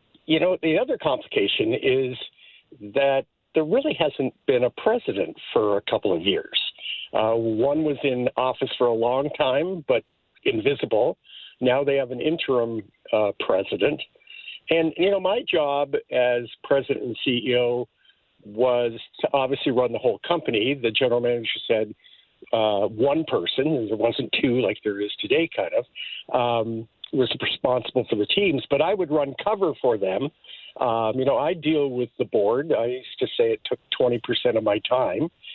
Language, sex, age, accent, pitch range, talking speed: English, male, 50-69, American, 120-190 Hz, 165 wpm